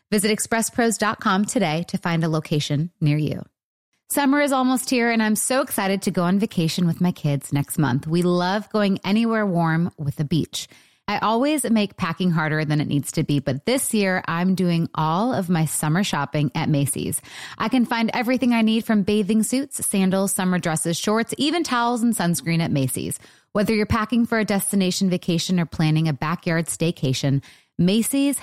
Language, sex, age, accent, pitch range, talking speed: English, female, 30-49, American, 165-225 Hz, 185 wpm